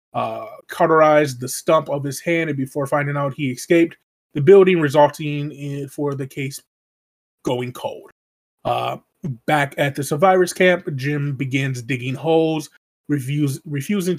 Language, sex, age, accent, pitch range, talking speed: English, male, 20-39, American, 135-160 Hz, 145 wpm